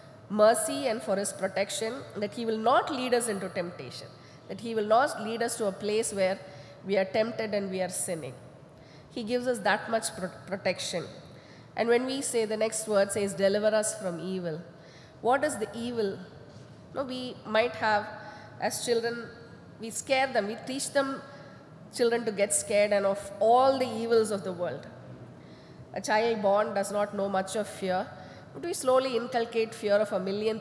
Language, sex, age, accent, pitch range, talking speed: English, female, 20-39, Indian, 190-230 Hz, 180 wpm